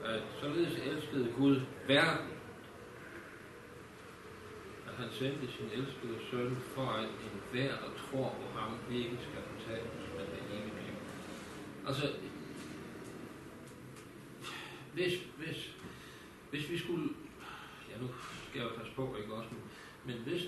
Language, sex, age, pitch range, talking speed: Danish, male, 60-79, 120-155 Hz, 130 wpm